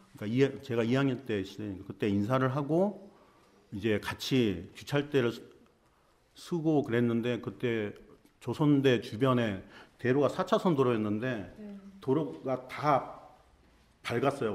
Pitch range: 105-160 Hz